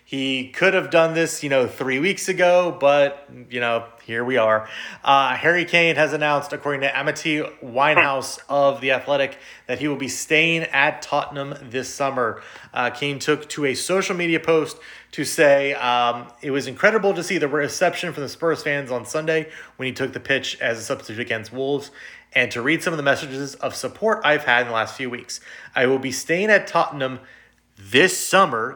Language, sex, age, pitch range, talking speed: English, male, 30-49, 130-155 Hz, 200 wpm